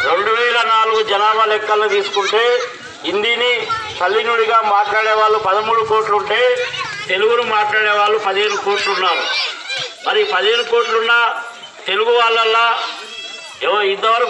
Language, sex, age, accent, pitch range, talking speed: Telugu, male, 50-69, native, 210-255 Hz, 100 wpm